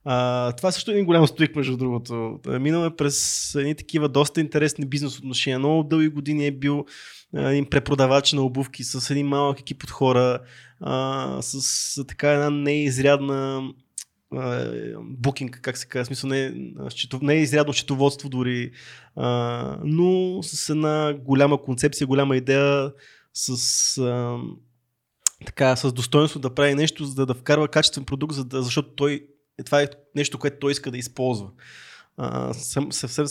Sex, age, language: male, 20-39, Bulgarian